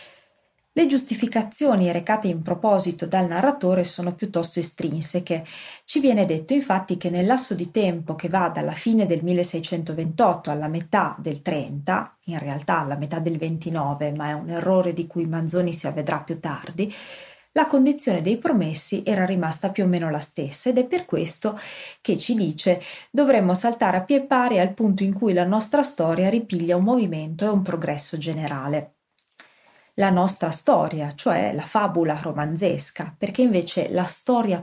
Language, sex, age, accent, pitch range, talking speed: Italian, female, 30-49, native, 170-225 Hz, 165 wpm